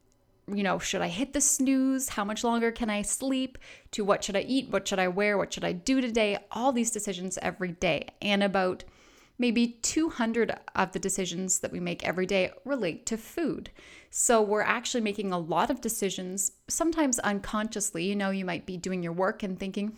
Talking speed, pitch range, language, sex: 200 wpm, 190-230 Hz, English, female